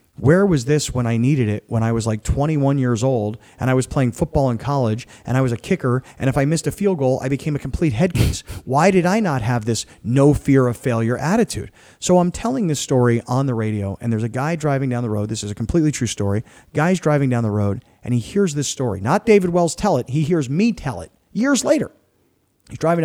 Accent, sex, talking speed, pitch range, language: American, male, 250 wpm, 110-150 Hz, English